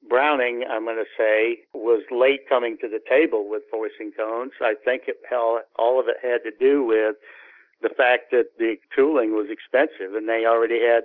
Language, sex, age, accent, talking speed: English, male, 60-79, American, 190 wpm